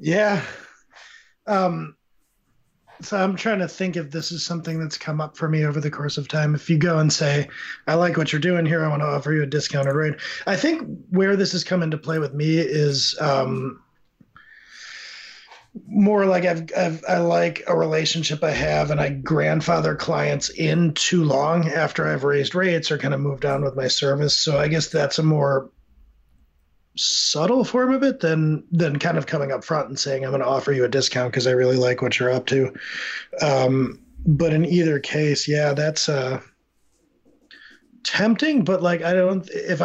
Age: 30-49